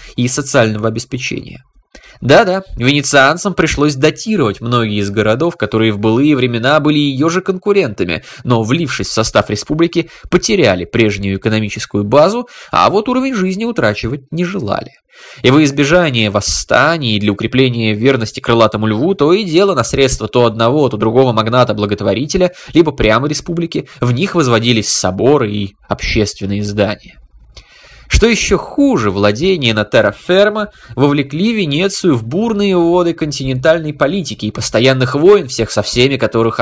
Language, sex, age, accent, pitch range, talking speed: Russian, male, 20-39, native, 110-165 Hz, 140 wpm